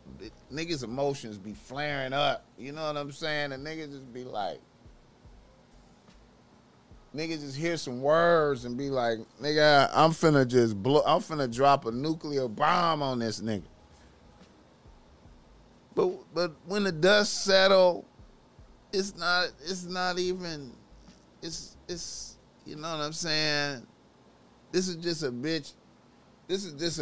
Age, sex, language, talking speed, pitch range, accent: 30-49, male, English, 140 wpm, 135-175 Hz, American